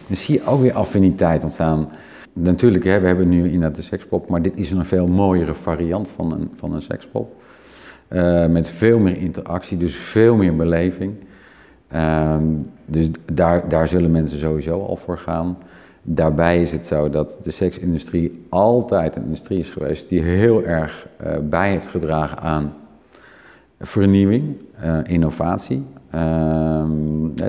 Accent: Dutch